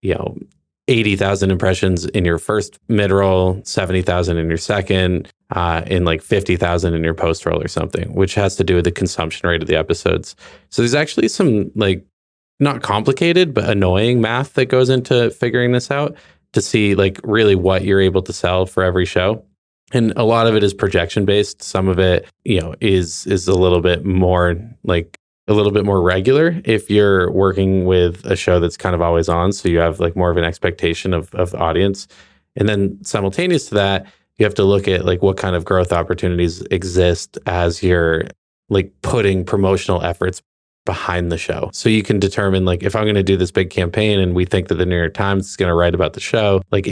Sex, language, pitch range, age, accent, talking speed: male, English, 90-100 Hz, 20-39, American, 210 wpm